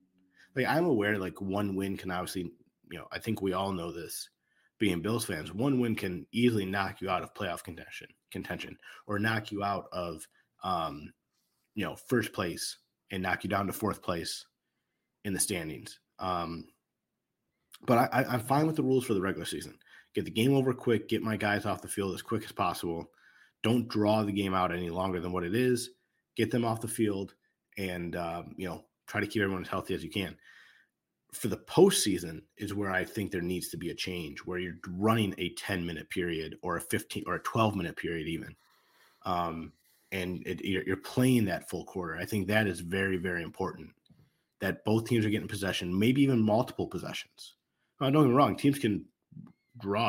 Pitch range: 90-110 Hz